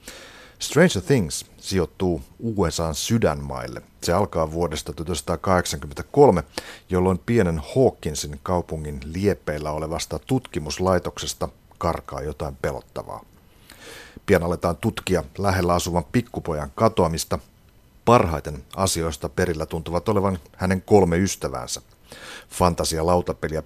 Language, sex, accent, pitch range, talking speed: Finnish, male, native, 80-95 Hz, 90 wpm